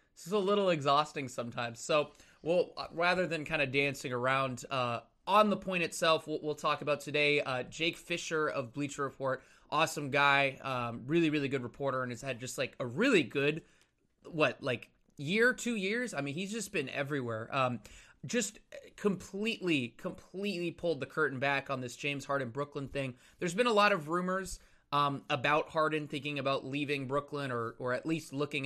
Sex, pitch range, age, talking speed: male, 135-170 Hz, 20-39, 185 wpm